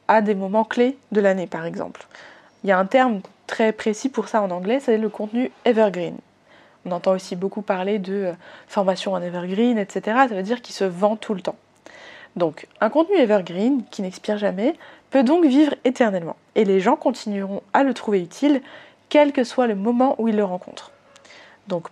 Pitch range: 200-270 Hz